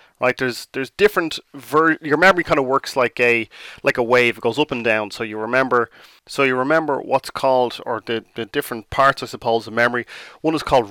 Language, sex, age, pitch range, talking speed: English, male, 30-49, 115-135 Hz, 220 wpm